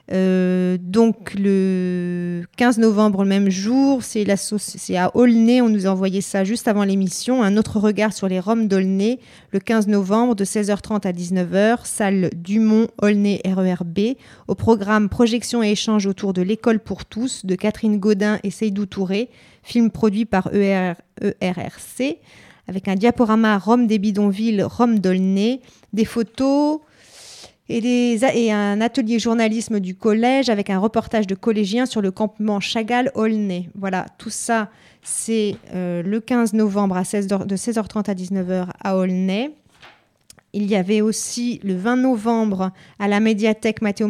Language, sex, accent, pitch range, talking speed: French, female, French, 195-225 Hz, 155 wpm